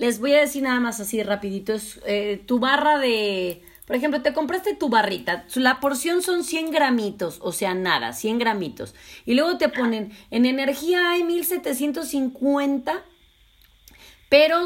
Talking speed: 155 wpm